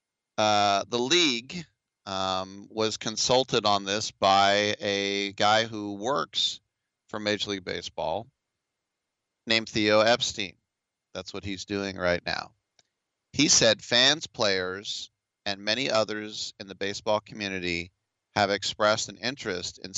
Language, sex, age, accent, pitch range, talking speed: English, male, 30-49, American, 100-115 Hz, 125 wpm